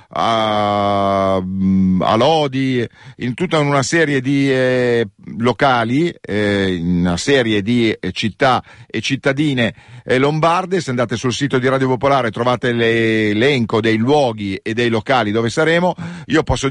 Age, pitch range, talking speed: 50-69, 110-145 Hz, 140 wpm